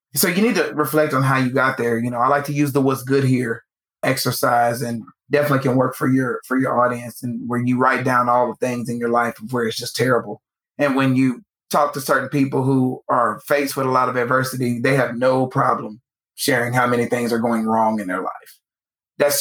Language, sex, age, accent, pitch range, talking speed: English, male, 30-49, American, 120-145 Hz, 230 wpm